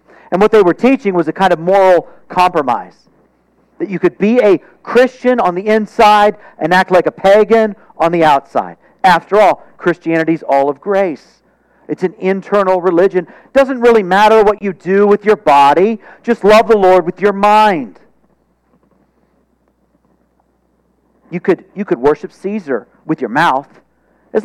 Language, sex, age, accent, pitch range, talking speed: English, male, 50-69, American, 150-205 Hz, 160 wpm